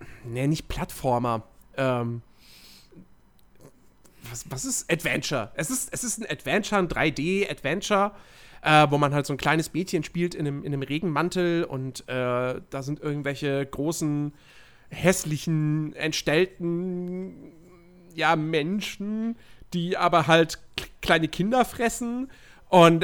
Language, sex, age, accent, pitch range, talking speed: German, male, 40-59, German, 135-180 Hz, 120 wpm